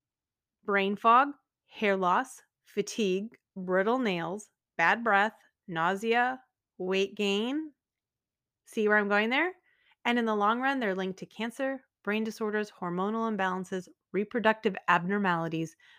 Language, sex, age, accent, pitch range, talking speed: English, female, 30-49, American, 185-270 Hz, 120 wpm